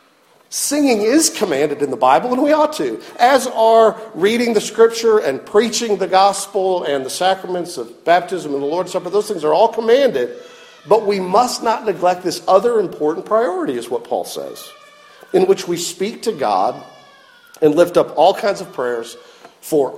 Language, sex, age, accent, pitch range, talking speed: English, male, 50-69, American, 175-260 Hz, 180 wpm